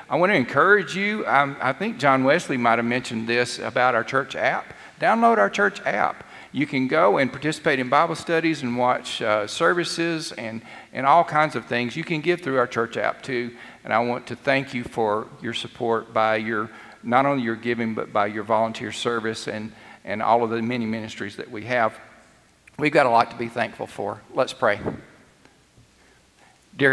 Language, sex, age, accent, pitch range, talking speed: English, male, 50-69, American, 115-140 Hz, 200 wpm